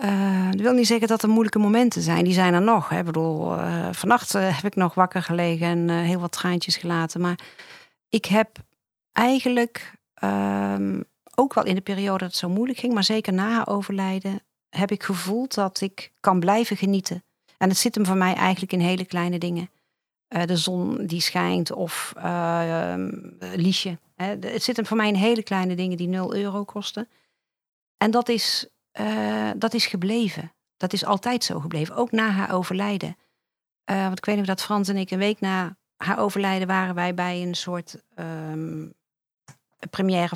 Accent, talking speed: Dutch, 195 wpm